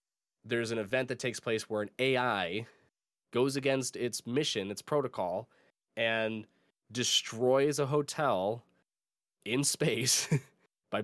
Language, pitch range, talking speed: English, 100-125 Hz, 120 wpm